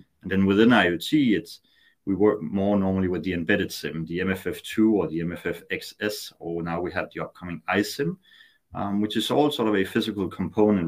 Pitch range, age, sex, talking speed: 80-105 Hz, 30-49, male, 195 wpm